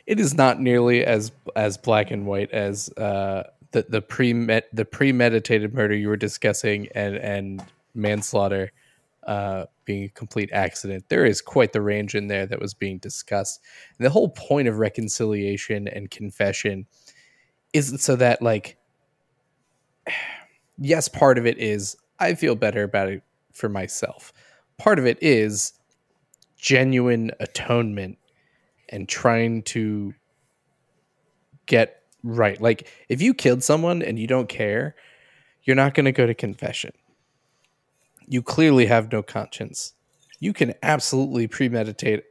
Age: 20-39